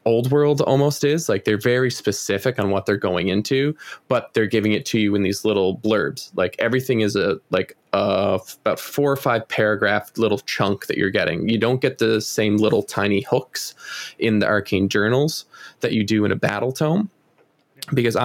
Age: 20-39